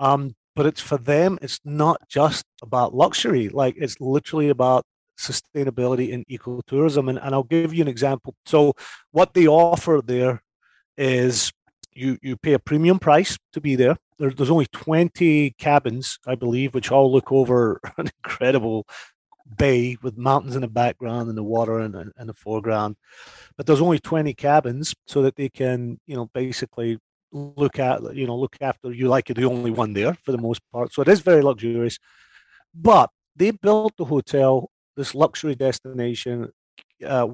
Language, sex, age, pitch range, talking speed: English, male, 30-49, 120-145 Hz, 175 wpm